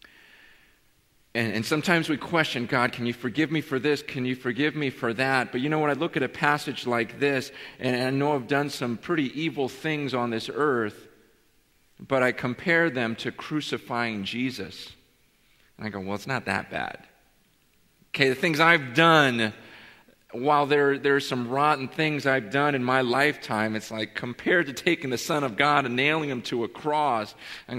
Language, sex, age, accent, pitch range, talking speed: English, male, 40-59, American, 120-145 Hz, 190 wpm